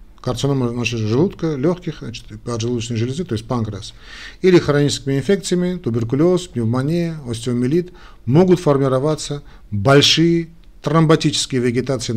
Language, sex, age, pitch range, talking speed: Russian, male, 40-59, 125-170 Hz, 95 wpm